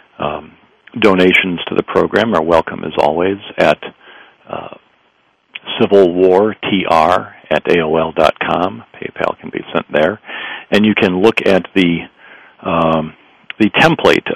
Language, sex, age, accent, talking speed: English, male, 50-69, American, 115 wpm